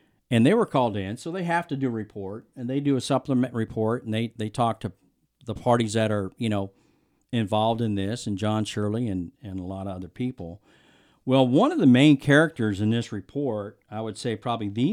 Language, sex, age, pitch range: English, male, 50-69, 105-135 Hz